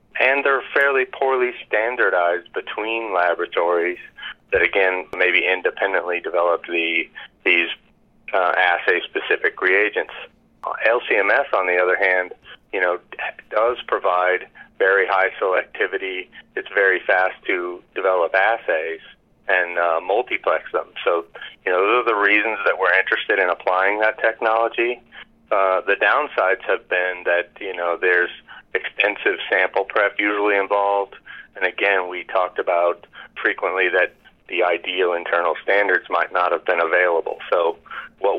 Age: 30-49